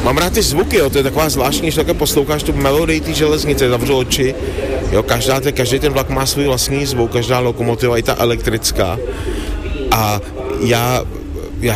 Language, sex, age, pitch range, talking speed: Slovak, male, 30-49, 115-130 Hz, 185 wpm